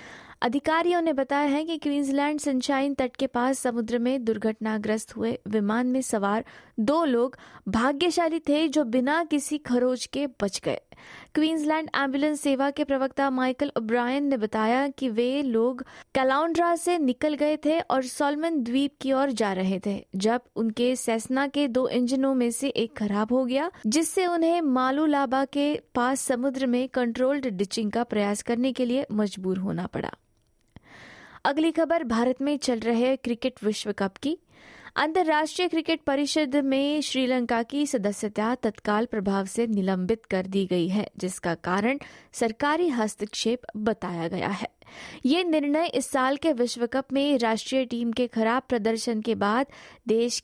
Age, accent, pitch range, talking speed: 20-39, native, 220-280 Hz, 155 wpm